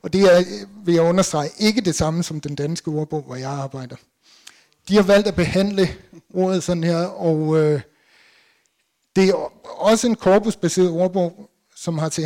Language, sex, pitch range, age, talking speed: Danish, male, 155-190 Hz, 60-79, 170 wpm